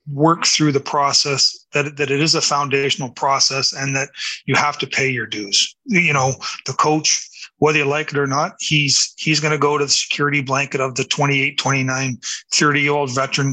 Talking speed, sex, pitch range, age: 205 wpm, male, 135-155 Hz, 30-49